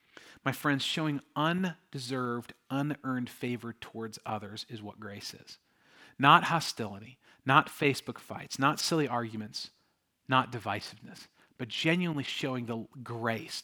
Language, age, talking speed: English, 40-59, 120 wpm